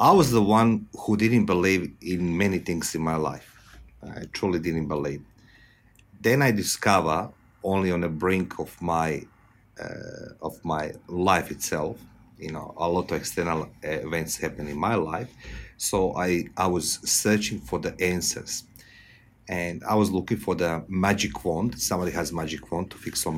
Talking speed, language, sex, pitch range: 165 wpm, English, male, 85-105 Hz